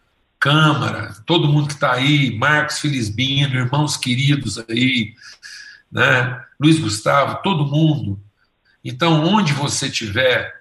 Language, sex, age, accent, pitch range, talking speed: Portuguese, male, 60-79, Brazilian, 110-150 Hz, 120 wpm